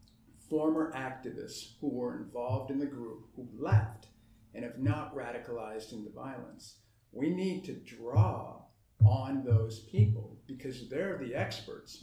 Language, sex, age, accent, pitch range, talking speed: English, male, 50-69, American, 115-140 Hz, 140 wpm